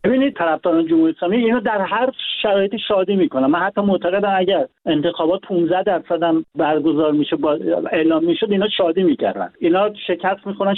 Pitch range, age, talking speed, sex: 185-230 Hz, 50-69, 155 wpm, male